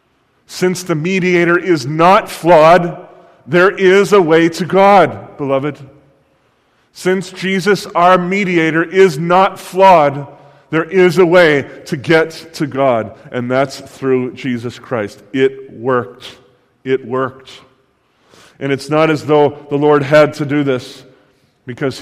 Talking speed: 135 wpm